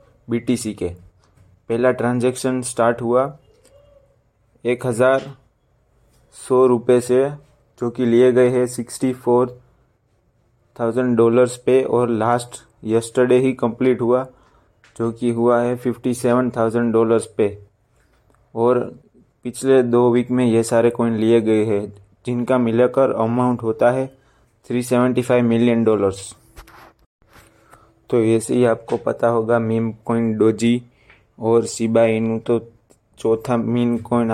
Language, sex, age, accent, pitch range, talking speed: Hindi, male, 20-39, native, 115-125 Hz, 130 wpm